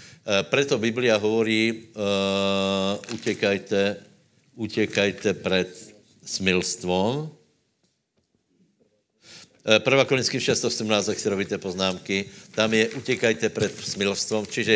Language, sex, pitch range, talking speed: Slovak, male, 95-110 Hz, 90 wpm